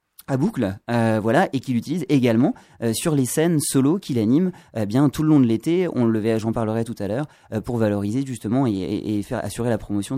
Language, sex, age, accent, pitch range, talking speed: French, male, 30-49, French, 120-165 Hz, 230 wpm